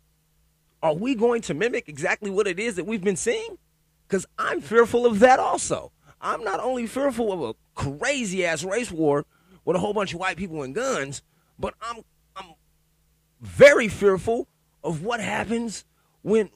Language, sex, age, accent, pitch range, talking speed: English, male, 30-49, American, 135-205 Hz, 165 wpm